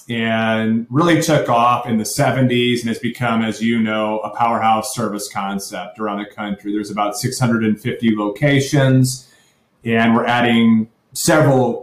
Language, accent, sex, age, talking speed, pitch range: English, American, male, 30-49, 140 wpm, 110-130 Hz